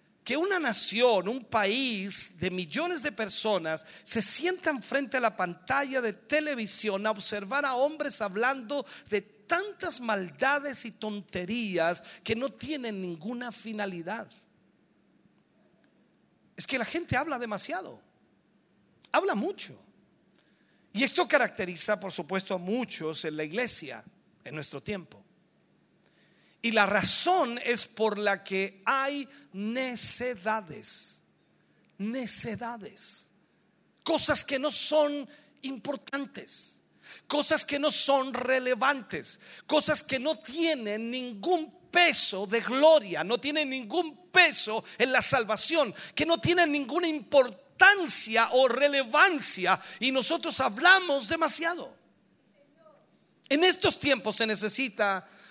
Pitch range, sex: 210-295 Hz, male